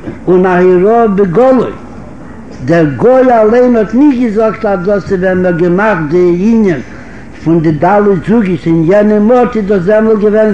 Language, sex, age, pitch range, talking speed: Hebrew, male, 60-79, 185-225 Hz, 150 wpm